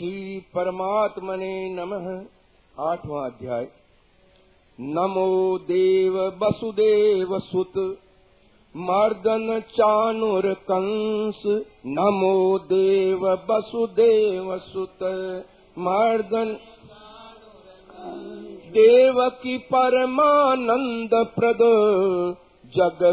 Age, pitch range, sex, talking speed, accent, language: 50-69, 190-225 Hz, male, 55 wpm, native, Hindi